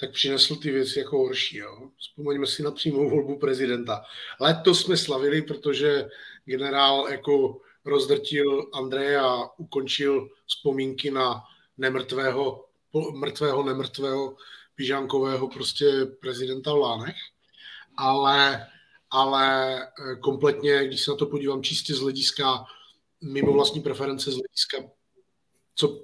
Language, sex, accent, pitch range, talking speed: Czech, male, native, 135-150 Hz, 115 wpm